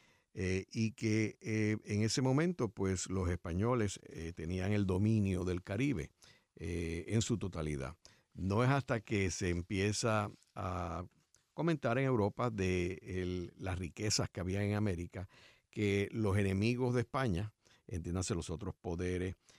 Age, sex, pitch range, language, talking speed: 60-79, male, 85-115 Hz, Spanish, 145 wpm